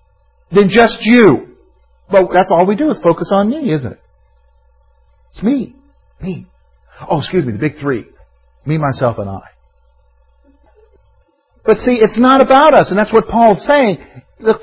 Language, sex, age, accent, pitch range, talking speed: English, male, 50-69, American, 110-160 Hz, 160 wpm